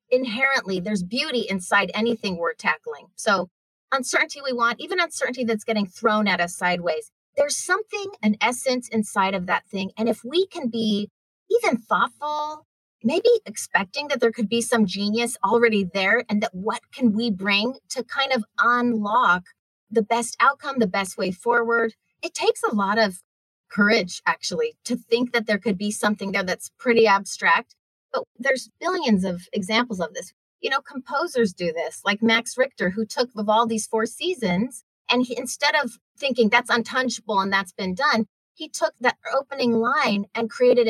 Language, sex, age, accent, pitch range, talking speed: English, female, 30-49, American, 205-260 Hz, 175 wpm